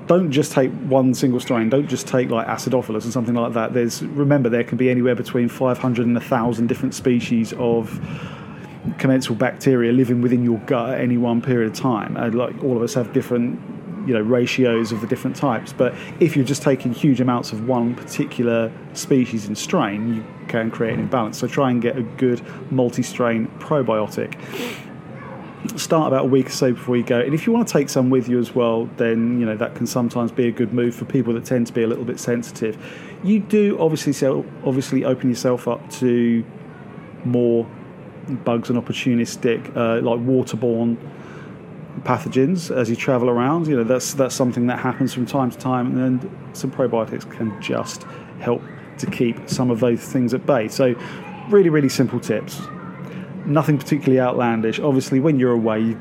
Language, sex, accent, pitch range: English, male, British, 120-135 Hz